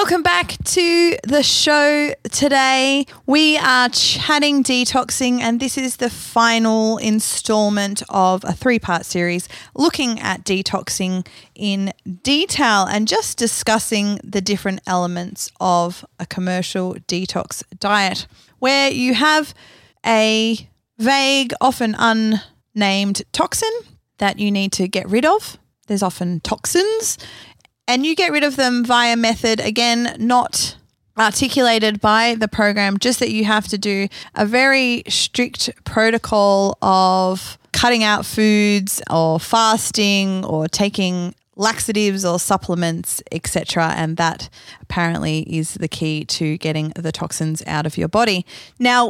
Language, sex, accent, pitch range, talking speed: English, female, Australian, 185-240 Hz, 130 wpm